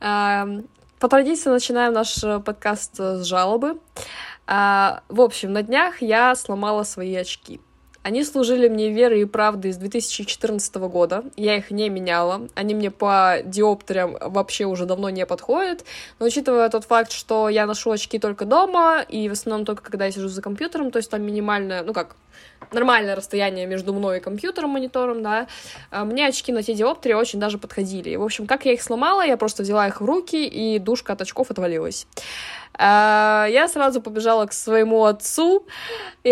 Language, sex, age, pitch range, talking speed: Russian, female, 20-39, 200-255 Hz, 170 wpm